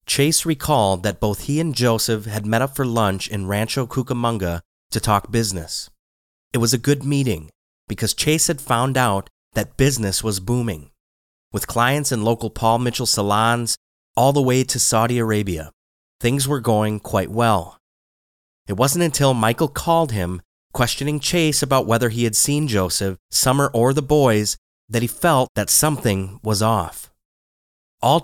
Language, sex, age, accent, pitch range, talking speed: English, male, 30-49, American, 100-135 Hz, 160 wpm